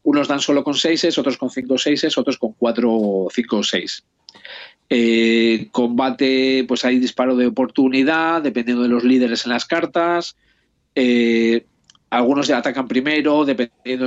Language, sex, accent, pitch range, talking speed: Spanish, male, Spanish, 120-155 Hz, 155 wpm